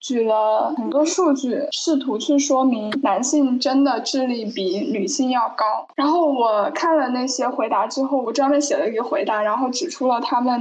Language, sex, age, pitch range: Chinese, female, 10-29, 240-295 Hz